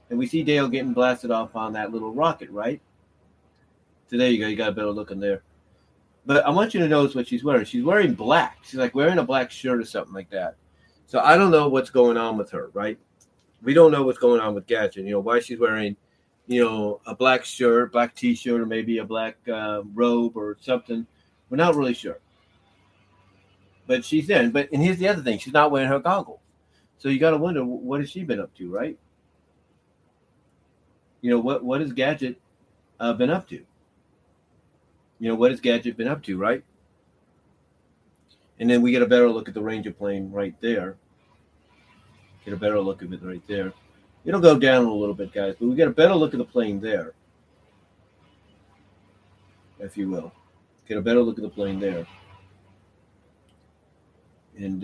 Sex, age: male, 40-59